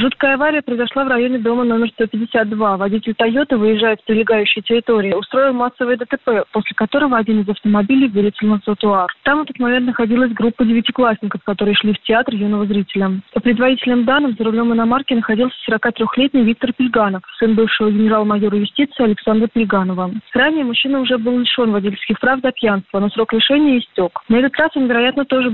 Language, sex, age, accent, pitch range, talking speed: Russian, female, 20-39, native, 210-250 Hz, 175 wpm